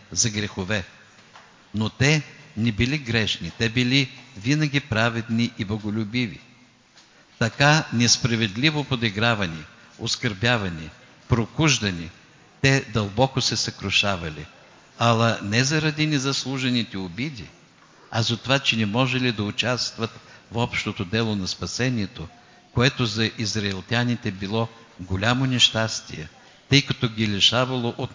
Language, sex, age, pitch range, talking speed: Bulgarian, male, 50-69, 105-125 Hz, 110 wpm